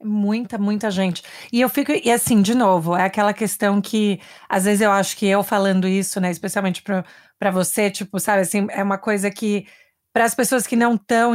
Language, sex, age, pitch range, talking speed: Portuguese, female, 30-49, 195-240 Hz, 205 wpm